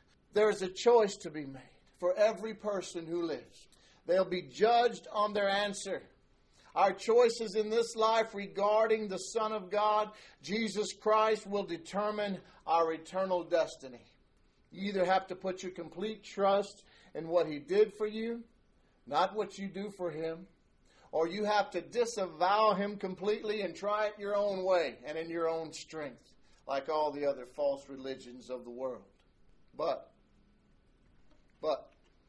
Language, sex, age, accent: English, male, 50-69, American